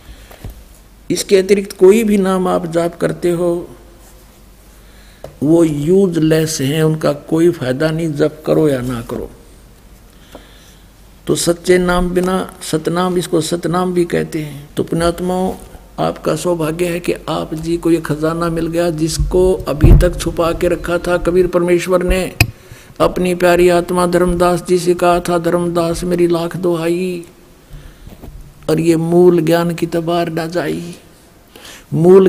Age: 60-79